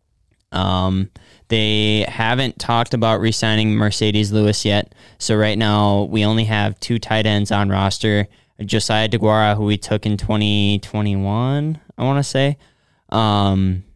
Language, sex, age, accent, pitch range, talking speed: English, male, 20-39, American, 95-110 Hz, 140 wpm